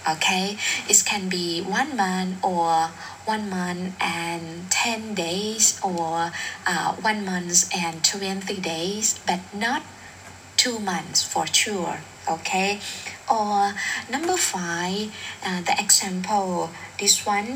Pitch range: 175-210 Hz